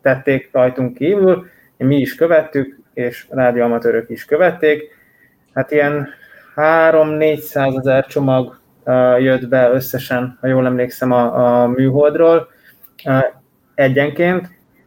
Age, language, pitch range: 20-39, Hungarian, 130-145 Hz